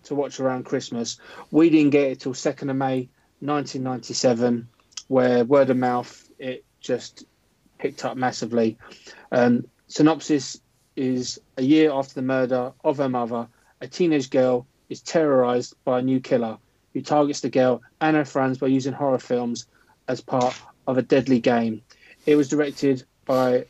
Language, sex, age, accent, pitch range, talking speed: English, male, 30-49, British, 125-140 Hz, 160 wpm